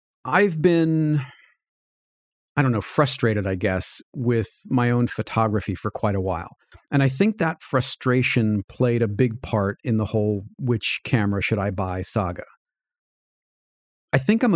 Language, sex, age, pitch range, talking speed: English, male, 40-59, 110-140 Hz, 155 wpm